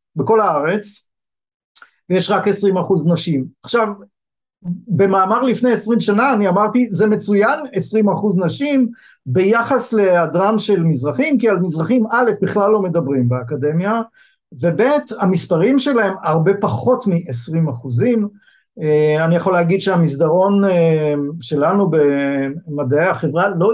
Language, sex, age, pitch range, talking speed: Hebrew, male, 50-69, 155-210 Hz, 115 wpm